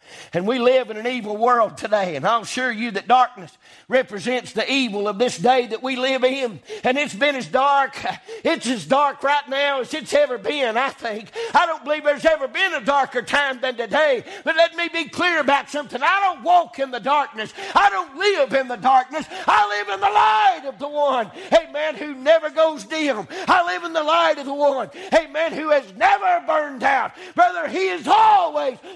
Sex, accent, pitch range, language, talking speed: male, American, 230-295 Hz, English, 210 wpm